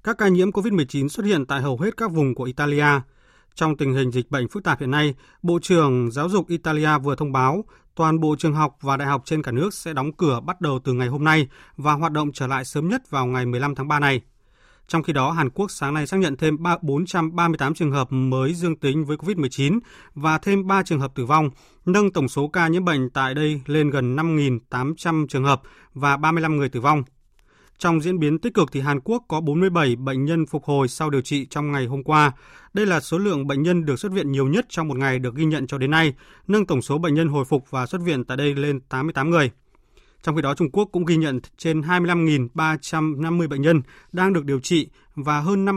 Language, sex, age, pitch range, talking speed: Vietnamese, male, 20-39, 135-170 Hz, 235 wpm